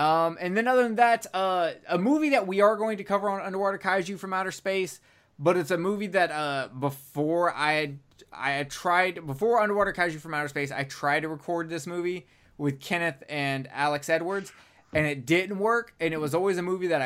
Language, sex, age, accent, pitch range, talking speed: English, male, 20-39, American, 145-195 Hz, 215 wpm